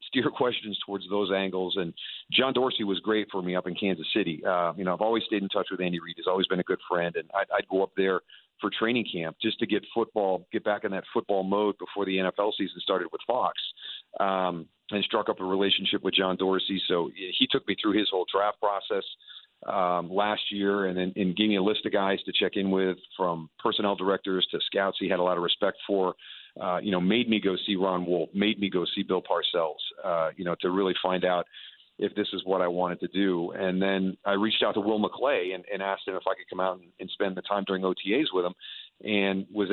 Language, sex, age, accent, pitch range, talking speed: English, male, 40-59, American, 95-105 Hz, 245 wpm